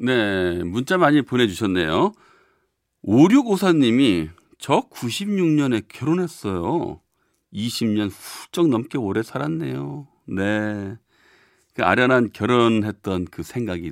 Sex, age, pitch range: male, 40-59, 95-130 Hz